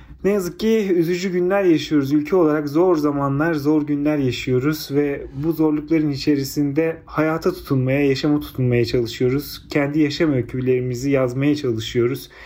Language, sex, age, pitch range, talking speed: Turkish, male, 40-59, 130-160 Hz, 130 wpm